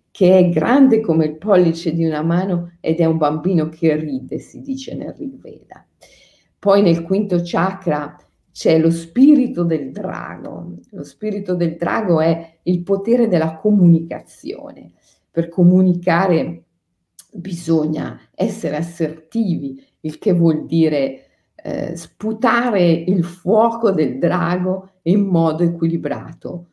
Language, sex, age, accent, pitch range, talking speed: Italian, female, 50-69, native, 150-185 Hz, 125 wpm